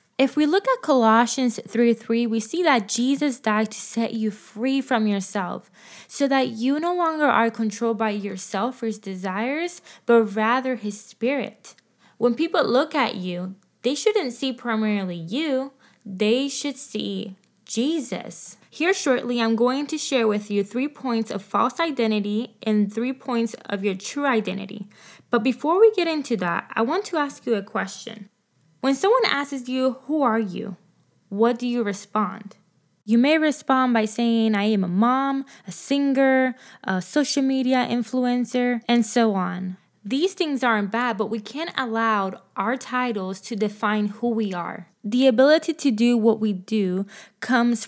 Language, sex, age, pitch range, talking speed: English, female, 20-39, 205-260 Hz, 165 wpm